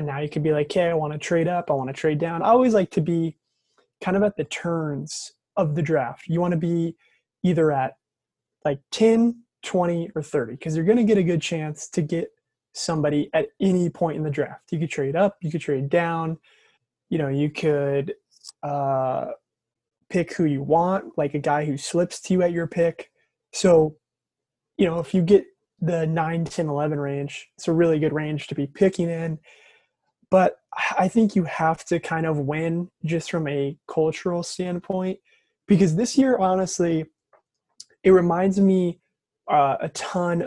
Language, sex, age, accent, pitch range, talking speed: English, male, 20-39, American, 155-185 Hz, 190 wpm